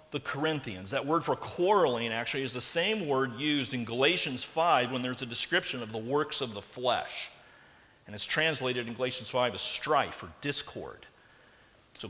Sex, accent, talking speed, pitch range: male, American, 180 wpm, 125-160 Hz